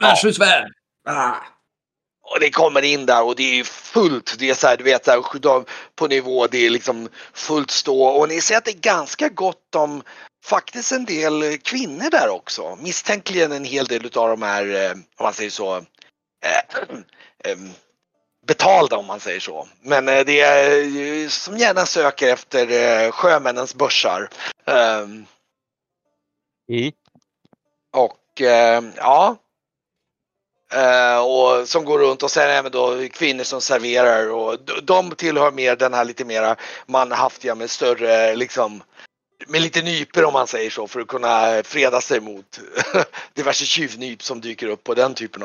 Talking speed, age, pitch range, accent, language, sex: 145 wpm, 30-49, 115-145 Hz, native, Swedish, male